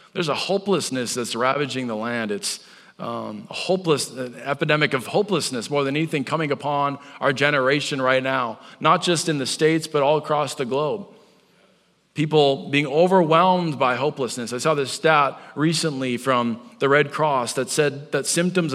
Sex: male